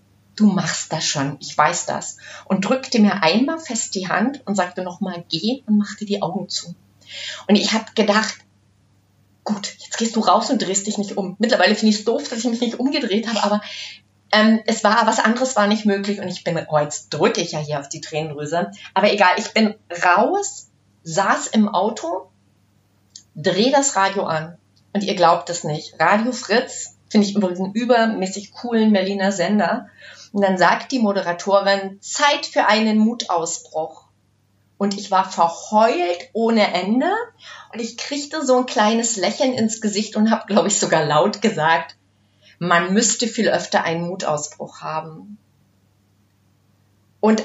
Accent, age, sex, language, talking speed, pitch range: German, 30-49, female, German, 170 wpm, 165-220 Hz